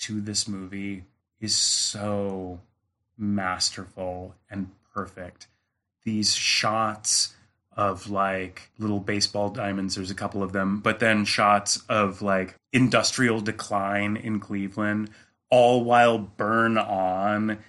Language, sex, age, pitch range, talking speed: English, male, 30-49, 105-120 Hz, 110 wpm